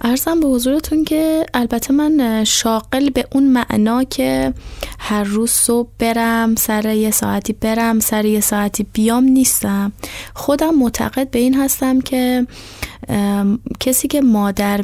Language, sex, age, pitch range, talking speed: Persian, female, 20-39, 205-250 Hz, 135 wpm